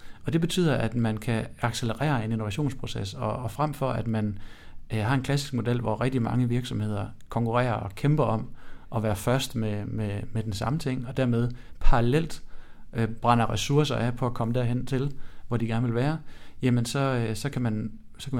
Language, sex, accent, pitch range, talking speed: Danish, male, native, 110-135 Hz, 200 wpm